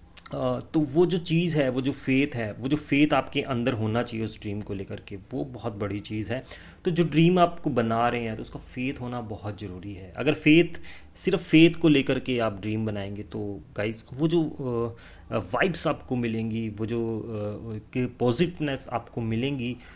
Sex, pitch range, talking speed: male, 105-130 Hz, 185 wpm